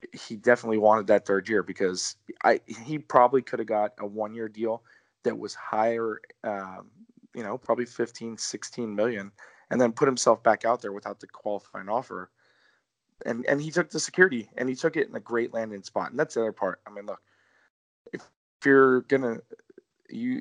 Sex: male